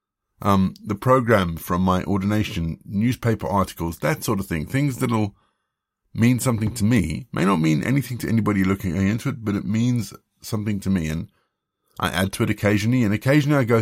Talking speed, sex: 190 wpm, male